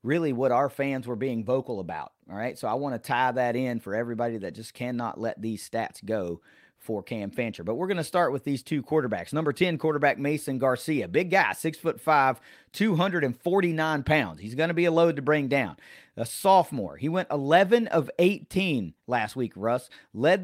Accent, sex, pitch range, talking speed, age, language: American, male, 125-170 Hz, 205 wpm, 40-59, English